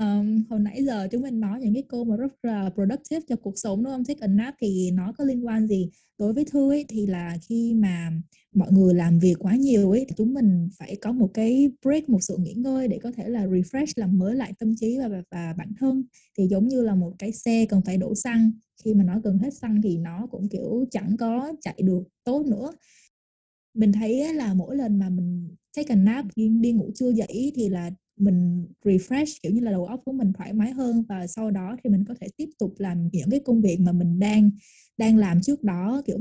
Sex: female